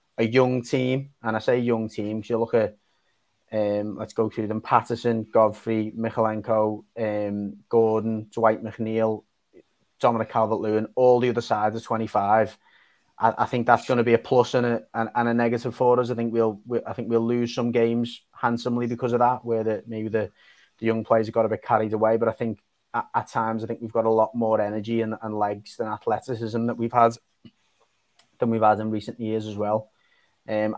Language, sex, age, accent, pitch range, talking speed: English, male, 30-49, British, 110-120 Hz, 210 wpm